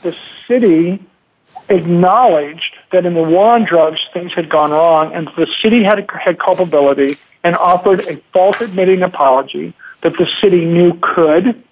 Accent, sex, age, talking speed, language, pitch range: American, male, 50-69, 155 wpm, English, 160-195 Hz